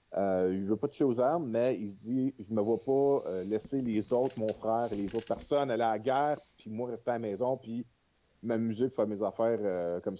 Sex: male